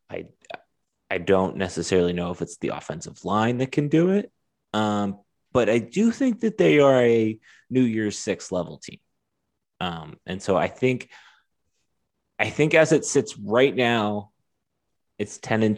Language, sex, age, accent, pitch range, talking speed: English, male, 30-49, American, 100-150 Hz, 165 wpm